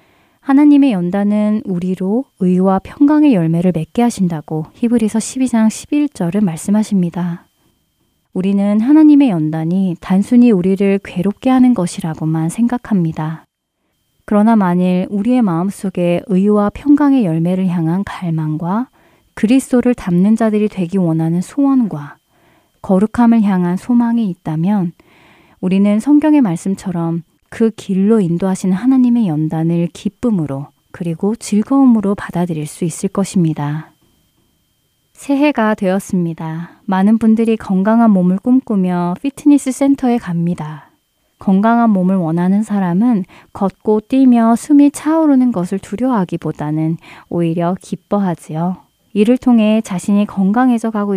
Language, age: Korean, 30-49